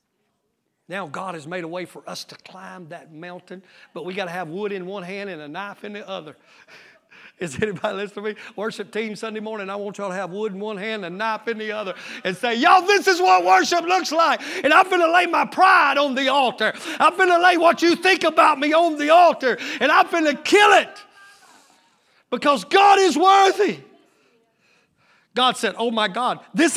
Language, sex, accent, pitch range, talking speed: English, male, American, 200-330 Hz, 220 wpm